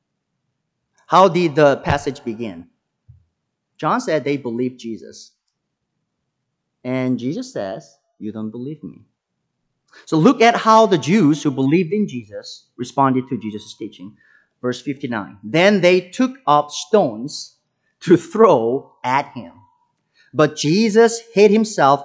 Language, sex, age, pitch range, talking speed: English, male, 30-49, 135-205 Hz, 125 wpm